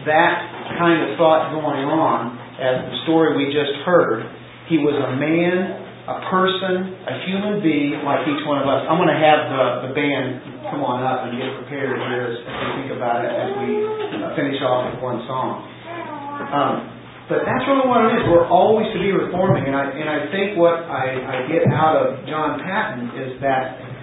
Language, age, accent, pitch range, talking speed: English, 40-59, American, 130-180 Hz, 200 wpm